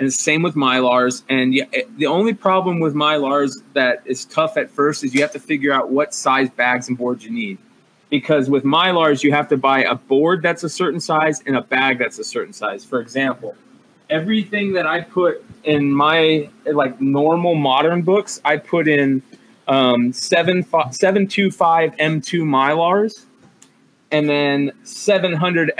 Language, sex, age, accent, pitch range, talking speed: English, male, 20-39, American, 140-175 Hz, 170 wpm